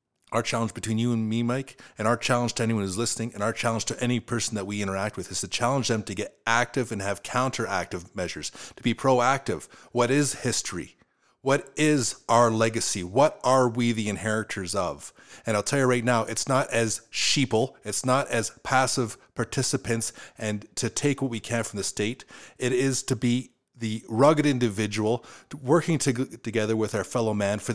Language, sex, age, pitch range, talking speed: English, male, 30-49, 115-135 Hz, 190 wpm